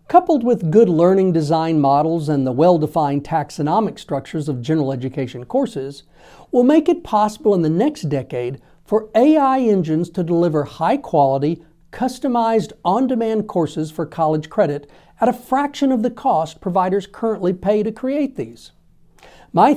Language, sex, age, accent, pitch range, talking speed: English, male, 50-69, American, 155-230 Hz, 145 wpm